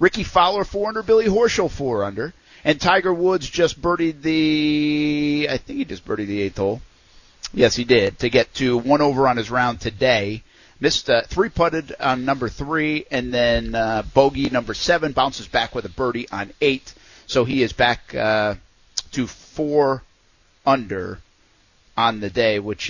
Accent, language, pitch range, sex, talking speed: American, English, 100-140 Hz, male, 160 wpm